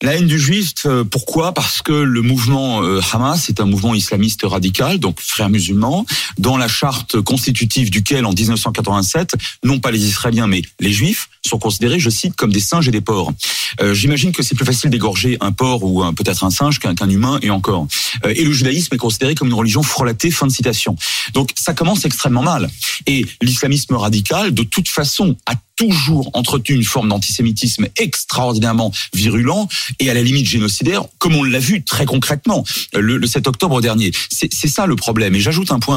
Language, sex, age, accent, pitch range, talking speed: French, male, 30-49, French, 105-145 Hz, 195 wpm